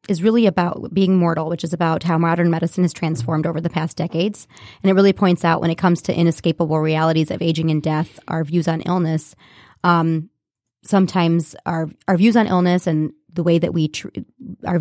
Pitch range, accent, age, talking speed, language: 160-180 Hz, American, 20-39, 200 wpm, English